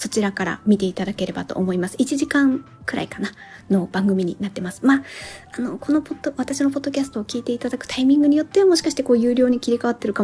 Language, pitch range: Japanese, 195-270 Hz